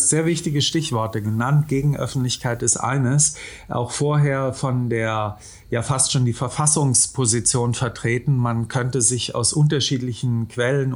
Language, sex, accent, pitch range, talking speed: German, male, German, 120-145 Hz, 125 wpm